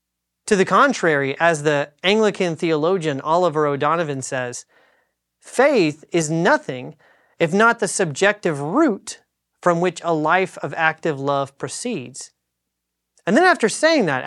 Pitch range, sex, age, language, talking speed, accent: 145-200 Hz, male, 30-49, English, 130 wpm, American